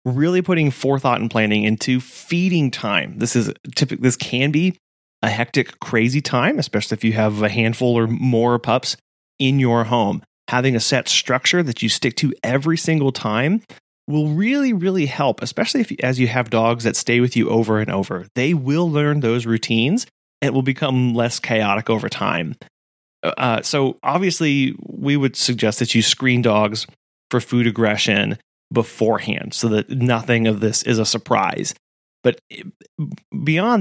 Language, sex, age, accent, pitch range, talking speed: English, male, 30-49, American, 115-145 Hz, 165 wpm